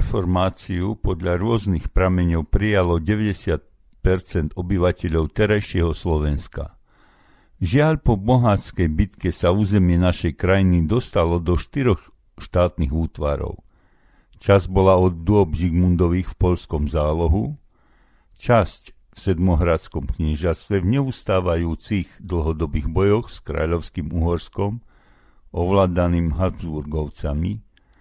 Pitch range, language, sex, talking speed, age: 80-100 Hz, Slovak, male, 90 wpm, 50-69